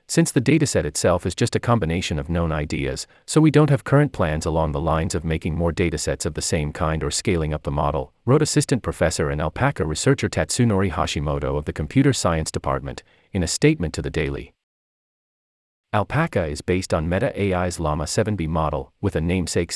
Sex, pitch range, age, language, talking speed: male, 75-125 Hz, 40-59, English, 195 wpm